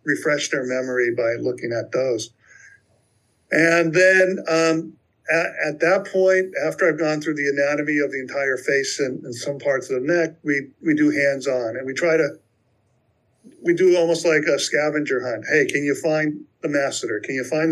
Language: English